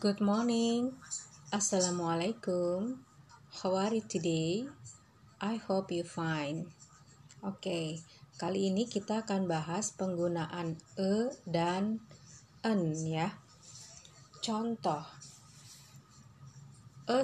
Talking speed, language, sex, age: 85 wpm, Indonesian, female, 30-49